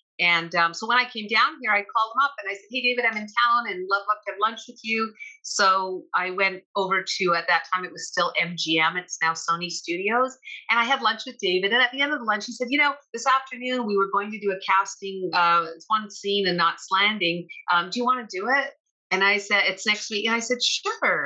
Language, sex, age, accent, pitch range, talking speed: English, female, 40-59, American, 175-230 Hz, 265 wpm